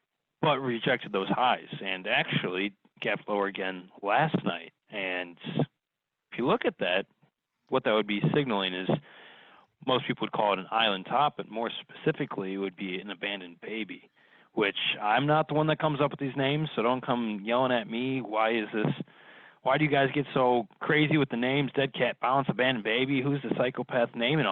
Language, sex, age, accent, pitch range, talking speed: English, male, 30-49, American, 100-140 Hz, 195 wpm